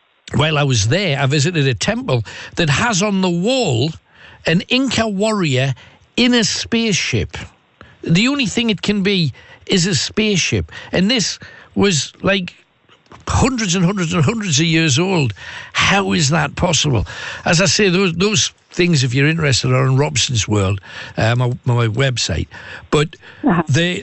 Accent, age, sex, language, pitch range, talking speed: British, 60-79, male, English, 135-195 Hz, 155 wpm